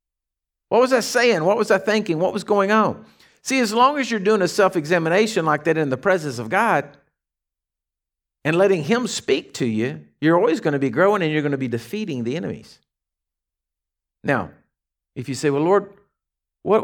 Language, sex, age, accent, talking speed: English, male, 50-69, American, 195 wpm